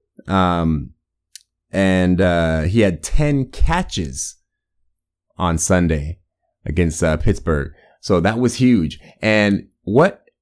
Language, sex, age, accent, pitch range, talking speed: English, male, 30-49, American, 90-115 Hz, 105 wpm